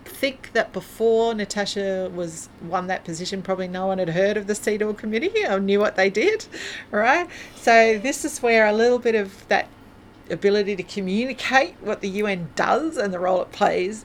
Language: English